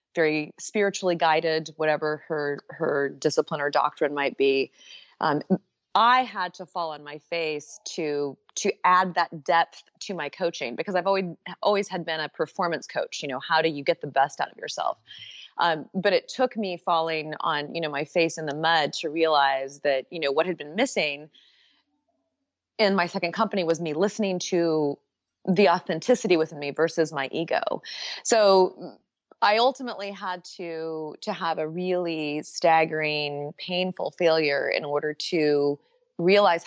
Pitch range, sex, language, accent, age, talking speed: 150-185 Hz, female, English, American, 30-49, 165 wpm